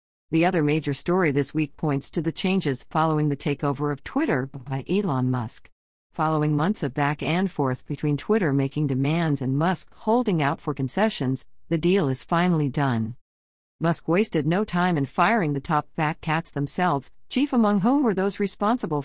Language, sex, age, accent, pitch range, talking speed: English, female, 50-69, American, 140-180 Hz, 175 wpm